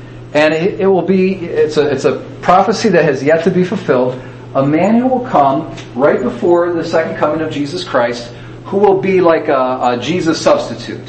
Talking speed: 195 wpm